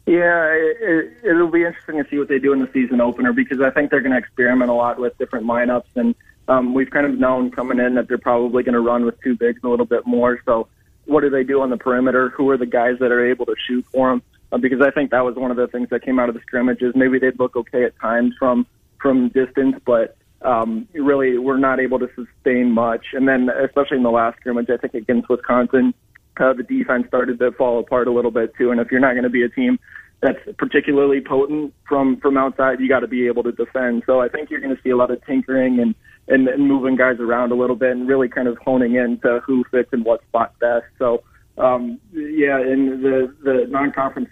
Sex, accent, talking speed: male, American, 245 wpm